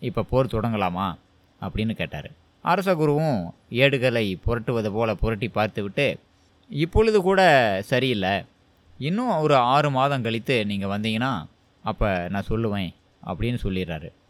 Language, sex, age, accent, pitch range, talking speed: Tamil, male, 20-39, native, 100-145 Hz, 115 wpm